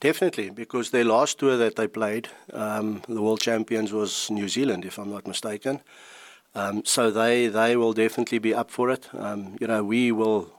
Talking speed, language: 195 wpm, English